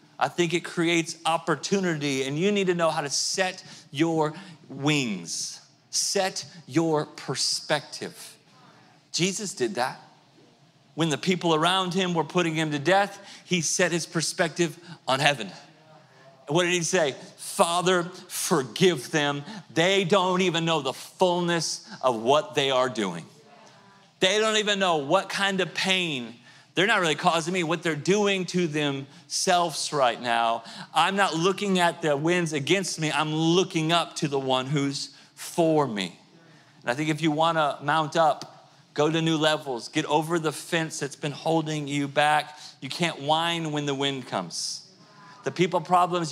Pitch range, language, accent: 150-180 Hz, English, American